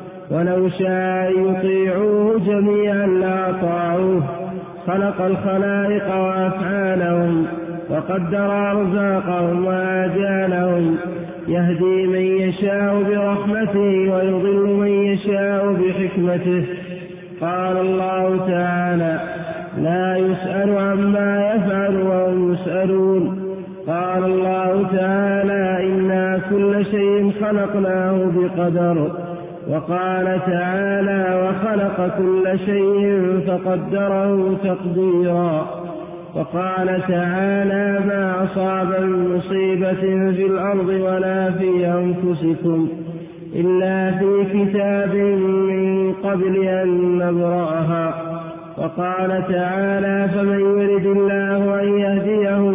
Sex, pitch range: male, 180-195 Hz